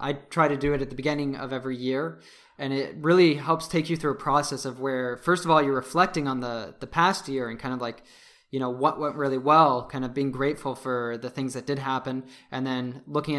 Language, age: English, 20-39